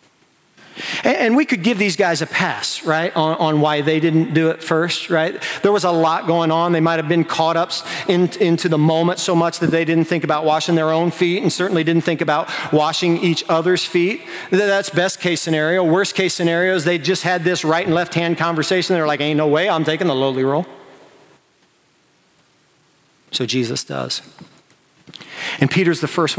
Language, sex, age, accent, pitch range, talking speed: English, male, 40-59, American, 145-180 Hz, 200 wpm